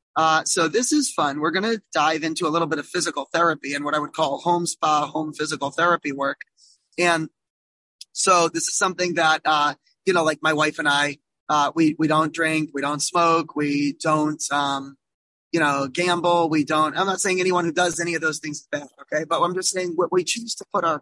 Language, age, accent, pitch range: English, 20-39, American, 150-175 Hz